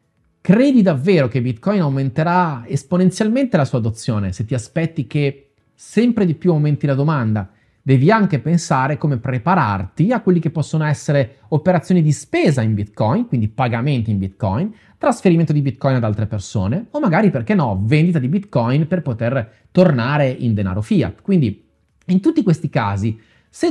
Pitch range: 115-170 Hz